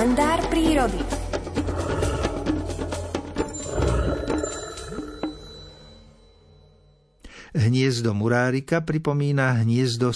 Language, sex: Slovak, male